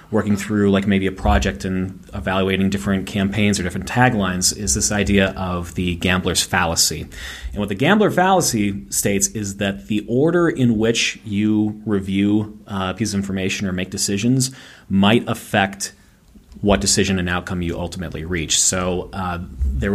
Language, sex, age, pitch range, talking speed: English, male, 30-49, 90-105 Hz, 160 wpm